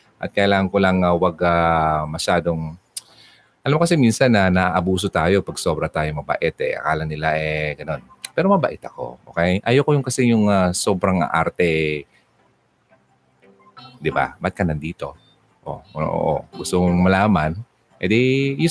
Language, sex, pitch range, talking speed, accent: Filipino, male, 85-120 Hz, 160 wpm, native